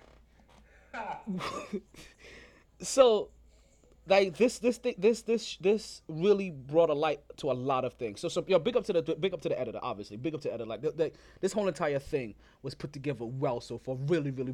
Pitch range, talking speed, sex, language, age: 115-190 Hz, 195 wpm, male, English, 20-39